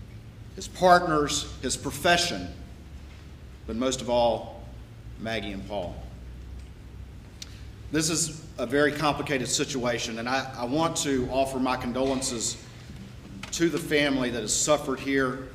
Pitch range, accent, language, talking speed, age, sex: 105-135 Hz, American, English, 125 wpm, 40-59, male